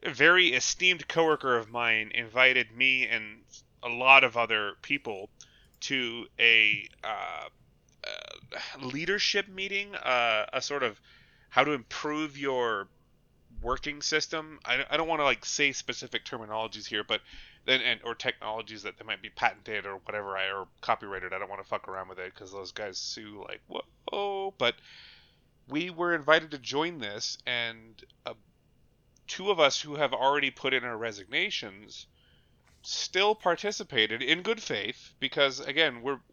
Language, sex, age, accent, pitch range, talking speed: English, male, 30-49, American, 110-150 Hz, 160 wpm